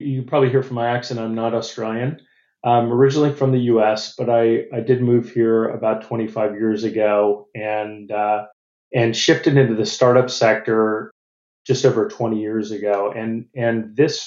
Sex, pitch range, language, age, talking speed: male, 105-120 Hz, English, 30-49, 175 wpm